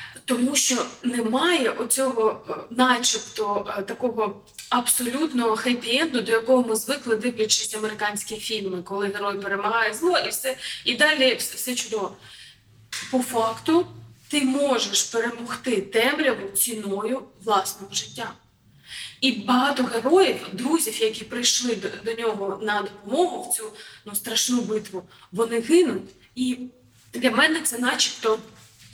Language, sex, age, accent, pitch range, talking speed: Ukrainian, female, 20-39, native, 210-260 Hz, 120 wpm